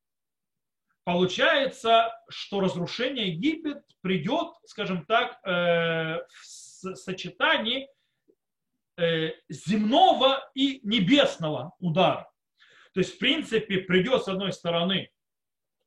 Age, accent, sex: 30-49, native, male